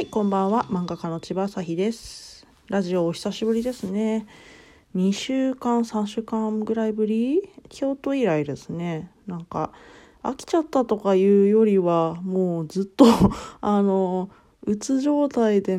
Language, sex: Japanese, female